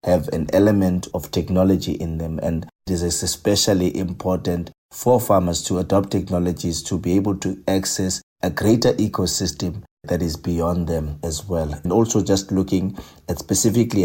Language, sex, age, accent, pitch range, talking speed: English, male, 30-49, South African, 85-100 Hz, 160 wpm